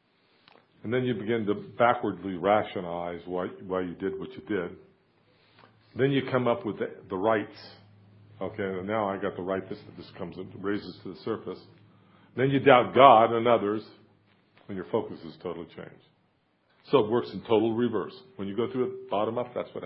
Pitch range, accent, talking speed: 95-115 Hz, American, 195 wpm